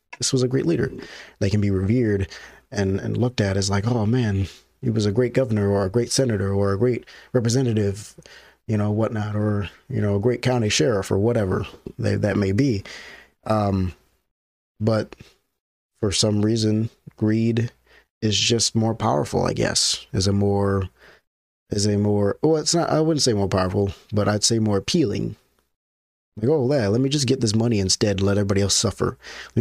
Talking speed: 185 wpm